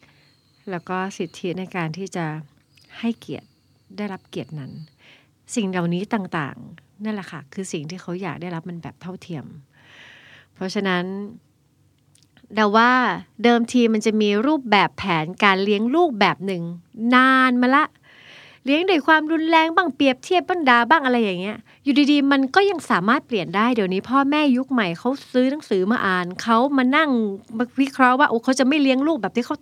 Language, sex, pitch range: Thai, female, 175-245 Hz